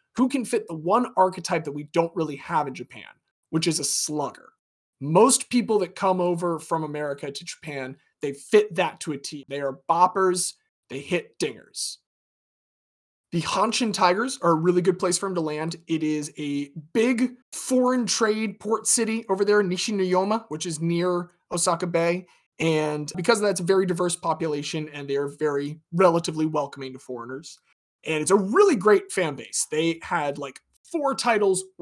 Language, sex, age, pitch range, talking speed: English, male, 30-49, 145-190 Hz, 175 wpm